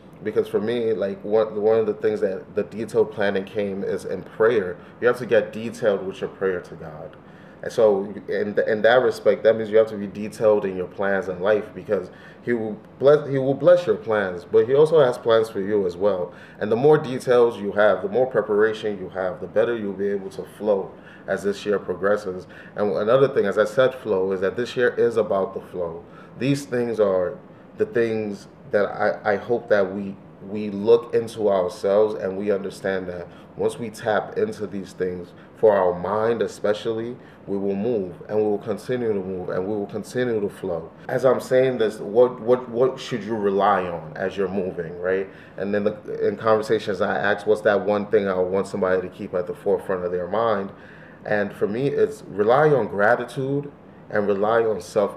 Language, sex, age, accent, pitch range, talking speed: English, male, 30-49, American, 100-145 Hz, 210 wpm